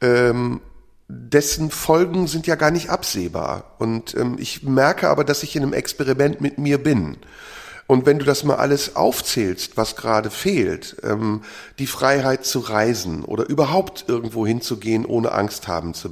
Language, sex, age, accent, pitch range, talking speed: German, male, 40-59, German, 125-150 Hz, 160 wpm